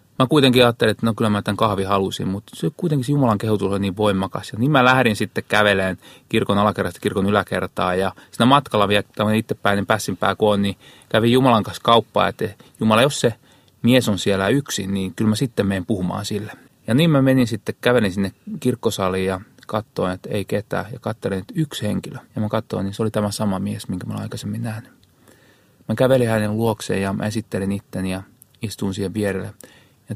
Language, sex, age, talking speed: Finnish, male, 30-49, 205 wpm